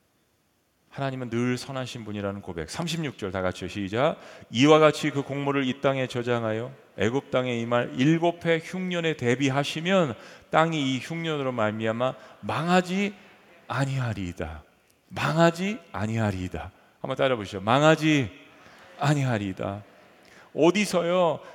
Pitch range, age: 125-180 Hz, 40-59